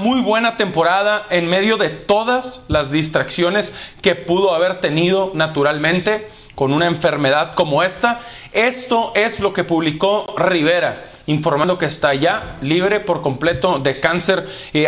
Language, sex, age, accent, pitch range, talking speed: Spanish, male, 40-59, Mexican, 140-205 Hz, 140 wpm